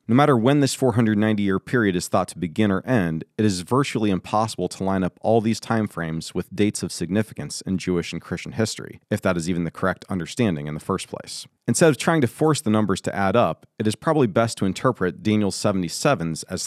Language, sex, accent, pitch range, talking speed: English, male, American, 90-115 Hz, 220 wpm